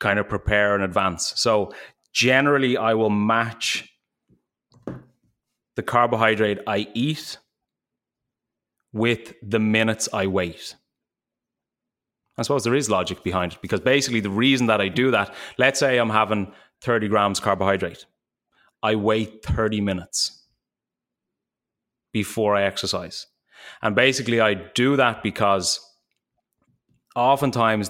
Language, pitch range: English, 100-120 Hz